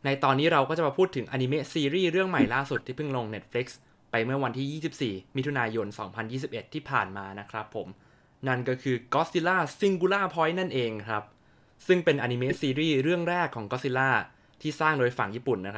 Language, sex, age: Thai, male, 20-39